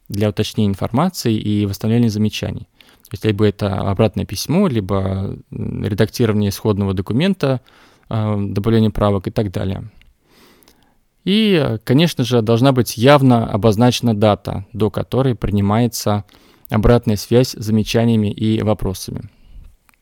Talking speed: 115 wpm